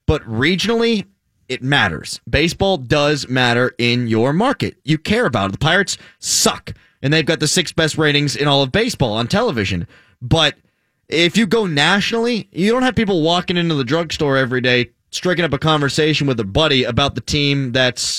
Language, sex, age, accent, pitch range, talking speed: English, male, 30-49, American, 120-165 Hz, 185 wpm